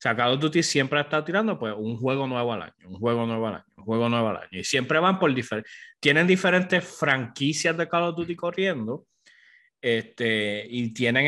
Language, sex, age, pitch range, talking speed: English, male, 30-49, 115-160 Hz, 215 wpm